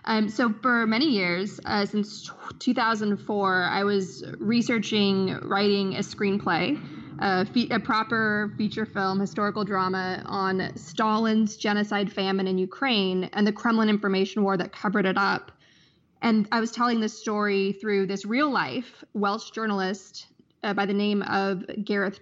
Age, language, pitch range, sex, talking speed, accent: 20-39, English, 195-220 Hz, female, 145 wpm, American